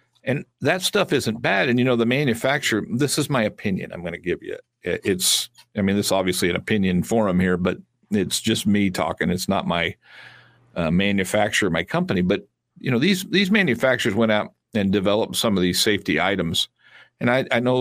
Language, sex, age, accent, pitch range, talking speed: English, male, 60-79, American, 95-125 Hz, 200 wpm